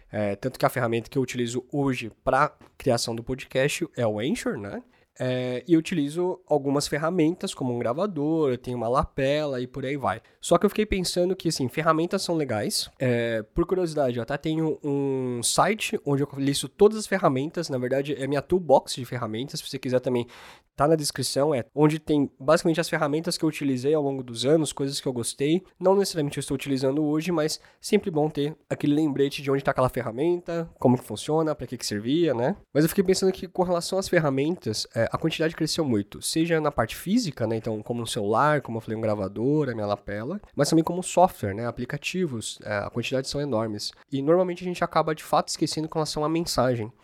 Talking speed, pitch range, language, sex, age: 215 wpm, 125-165 Hz, Portuguese, male, 20-39